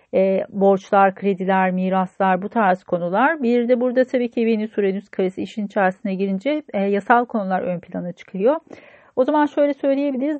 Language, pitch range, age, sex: Turkish, 190-230 Hz, 40-59, female